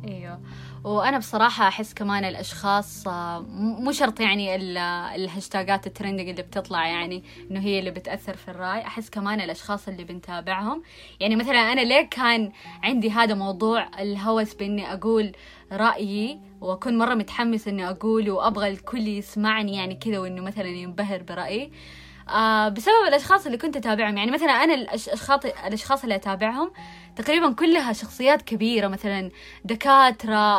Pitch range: 195-235 Hz